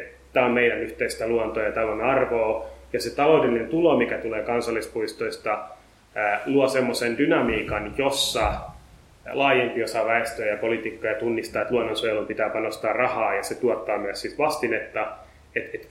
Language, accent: Finnish, native